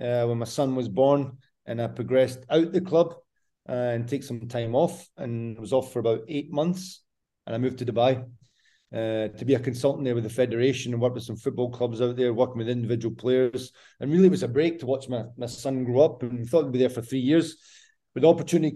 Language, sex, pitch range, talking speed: English, male, 120-140 Hz, 245 wpm